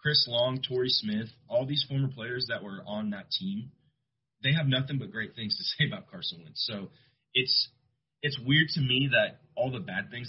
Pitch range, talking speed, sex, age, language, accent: 125-175 Hz, 205 wpm, male, 30-49, English, American